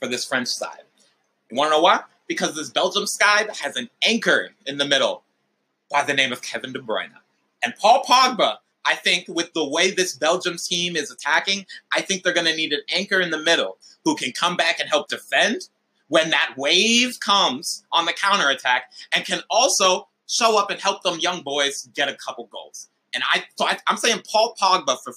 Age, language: 30-49, English